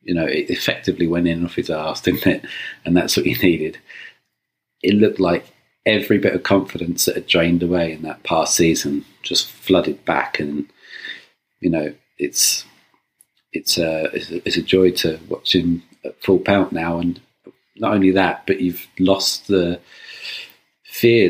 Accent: British